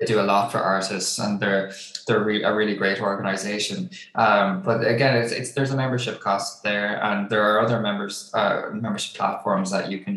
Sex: male